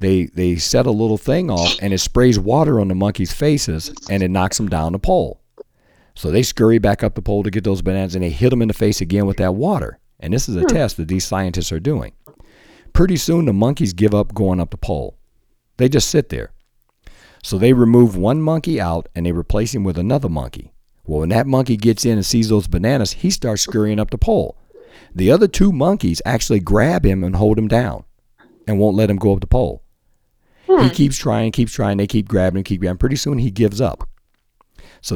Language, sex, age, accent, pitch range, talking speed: English, male, 50-69, American, 95-125 Hz, 225 wpm